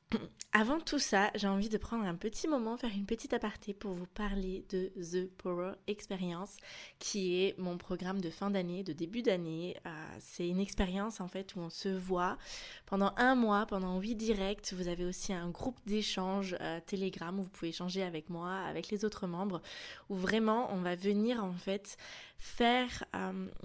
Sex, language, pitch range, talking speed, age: female, French, 185-215 Hz, 190 wpm, 20-39